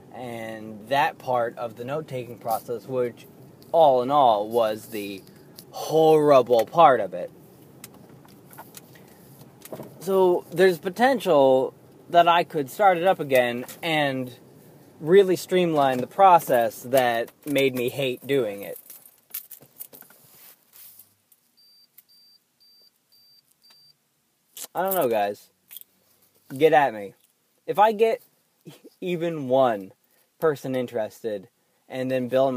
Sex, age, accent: male, 20-39, American